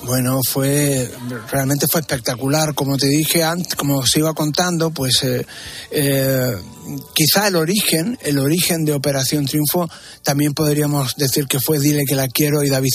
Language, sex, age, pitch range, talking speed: Spanish, male, 60-79, 135-165 Hz, 160 wpm